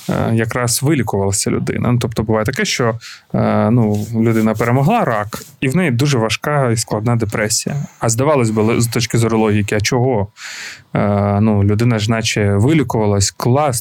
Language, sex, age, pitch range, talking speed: Ukrainian, male, 20-39, 110-135 Hz, 140 wpm